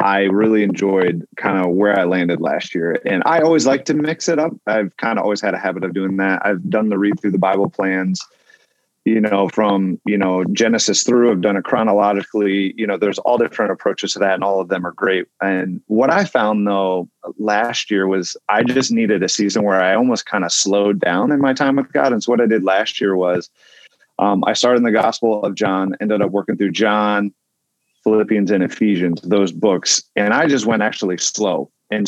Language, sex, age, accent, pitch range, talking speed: English, male, 30-49, American, 95-120 Hz, 225 wpm